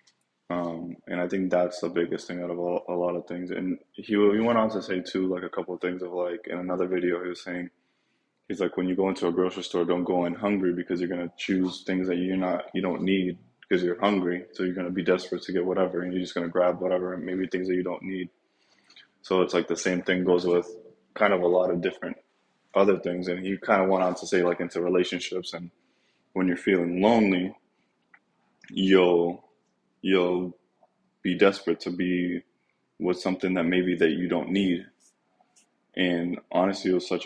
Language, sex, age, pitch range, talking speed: English, male, 20-39, 90-95 Hz, 220 wpm